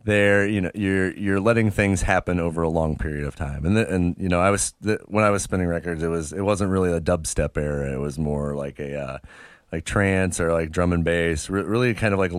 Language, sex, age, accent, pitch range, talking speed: English, male, 30-49, American, 80-95 Hz, 255 wpm